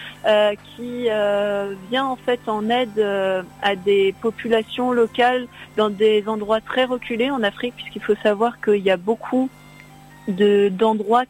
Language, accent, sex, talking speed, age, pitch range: French, French, female, 150 wpm, 40-59, 200-230 Hz